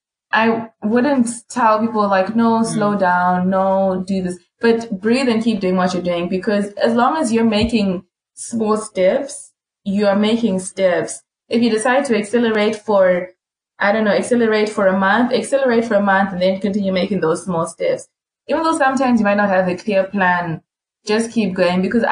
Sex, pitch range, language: female, 185-230 Hz, English